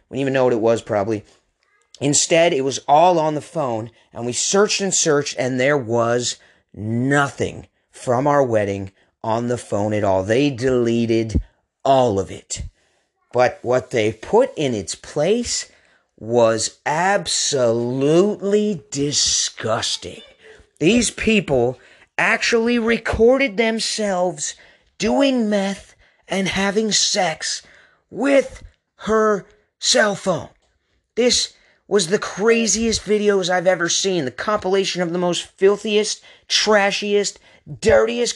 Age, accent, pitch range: 40-59, American, 135-210 Hz